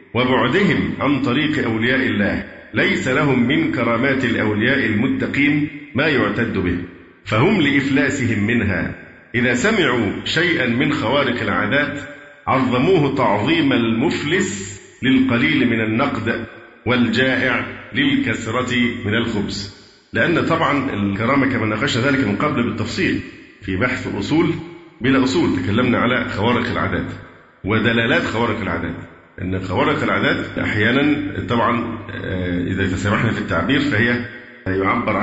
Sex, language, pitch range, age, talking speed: male, Arabic, 100-130 Hz, 50-69, 110 wpm